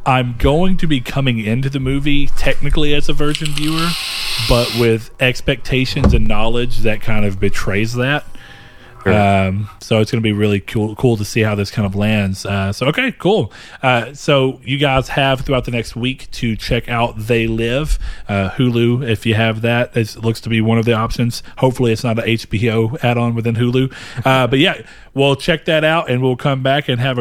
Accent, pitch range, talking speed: American, 110-140 Hz, 205 wpm